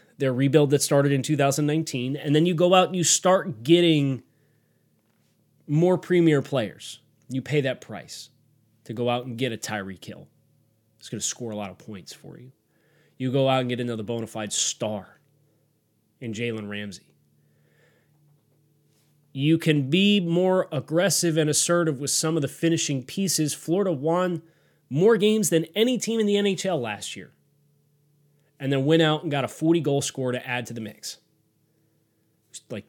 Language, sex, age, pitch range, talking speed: English, male, 30-49, 125-160 Hz, 170 wpm